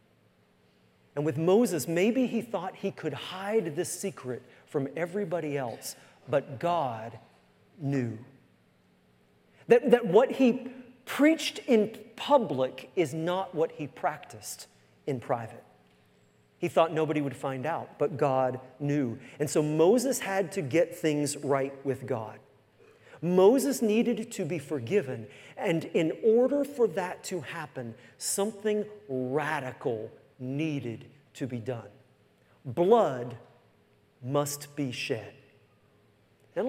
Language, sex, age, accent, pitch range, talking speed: English, male, 40-59, American, 130-195 Hz, 120 wpm